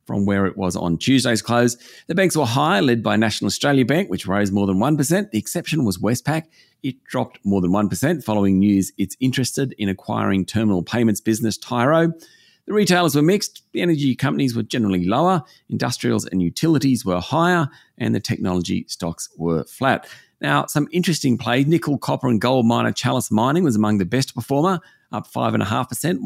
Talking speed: 180 wpm